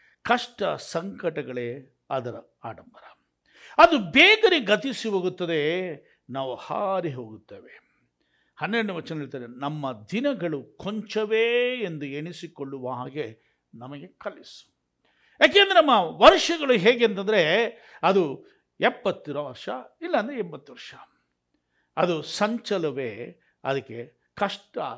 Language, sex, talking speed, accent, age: Kannada, male, 85 wpm, native, 60-79